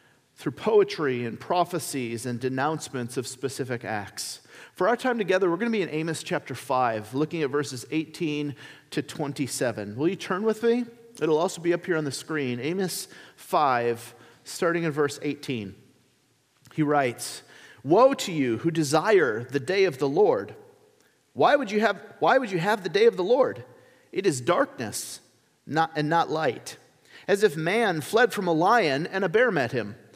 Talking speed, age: 175 wpm, 40-59